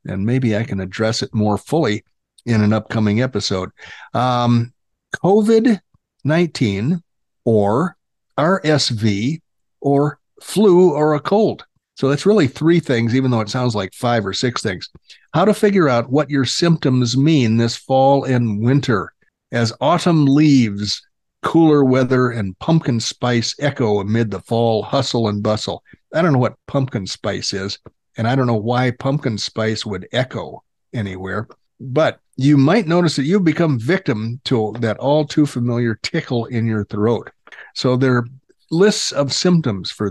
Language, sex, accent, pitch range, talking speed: English, male, American, 110-150 Hz, 150 wpm